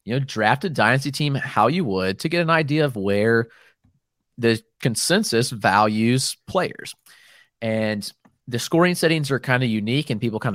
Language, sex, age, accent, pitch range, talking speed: English, male, 30-49, American, 115-150 Hz, 170 wpm